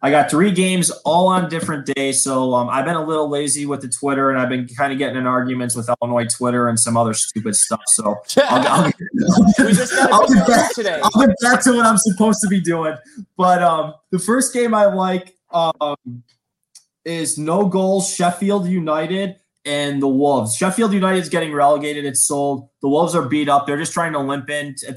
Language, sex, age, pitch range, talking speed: English, male, 20-39, 135-175 Hz, 200 wpm